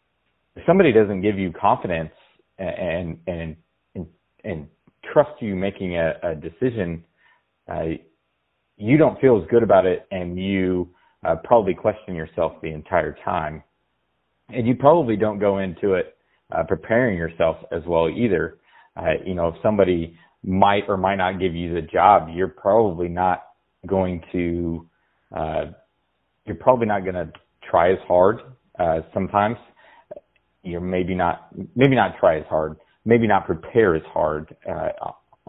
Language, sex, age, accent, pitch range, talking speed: English, male, 30-49, American, 85-105 Hz, 150 wpm